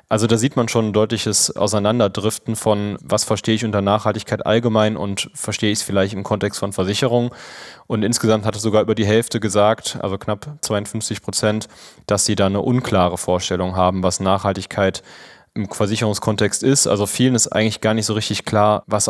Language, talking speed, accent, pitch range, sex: German, 185 wpm, German, 100-115 Hz, male